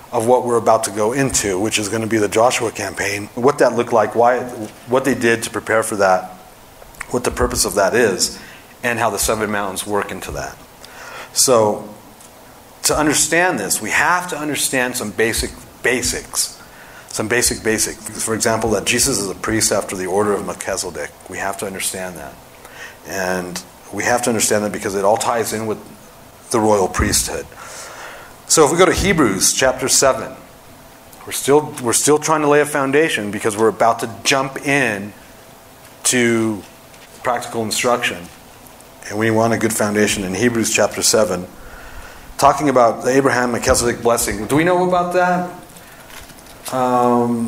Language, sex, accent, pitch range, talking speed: English, male, American, 110-135 Hz, 175 wpm